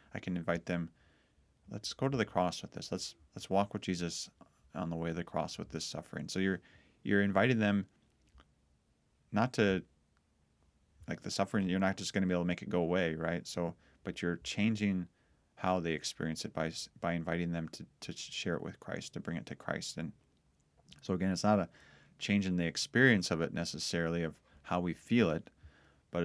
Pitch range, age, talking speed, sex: 80-105 Hz, 30-49, 205 wpm, male